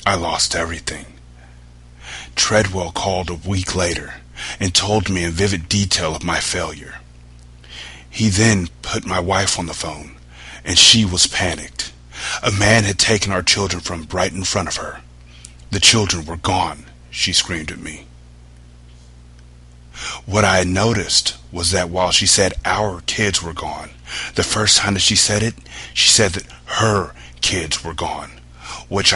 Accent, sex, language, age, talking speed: American, male, English, 30-49, 160 wpm